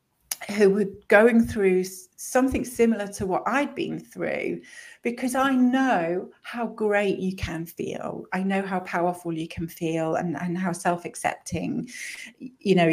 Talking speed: 150 wpm